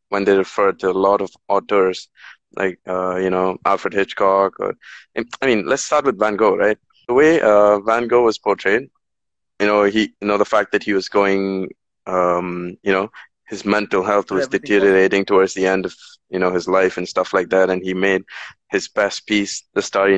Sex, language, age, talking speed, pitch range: male, Tamil, 20-39, 205 wpm, 95-105 Hz